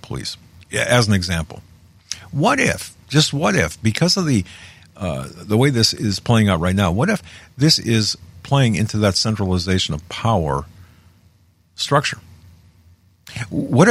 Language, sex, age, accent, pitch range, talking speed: English, male, 50-69, American, 90-115 Hz, 145 wpm